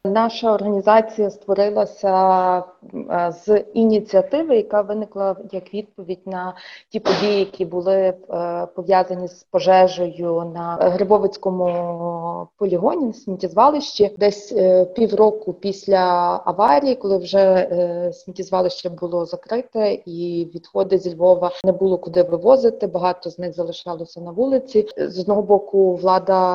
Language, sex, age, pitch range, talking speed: Ukrainian, female, 30-49, 175-205 Hz, 110 wpm